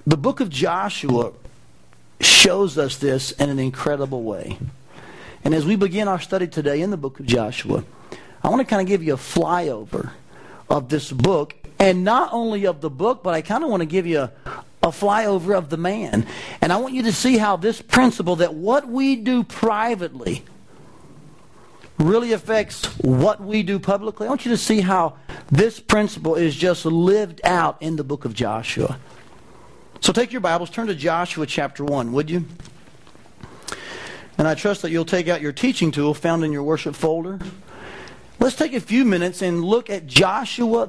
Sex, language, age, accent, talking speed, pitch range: male, English, 40-59, American, 185 wpm, 155-210 Hz